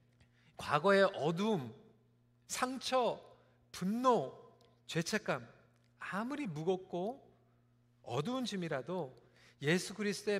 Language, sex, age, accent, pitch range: Korean, male, 40-59, native, 145-230 Hz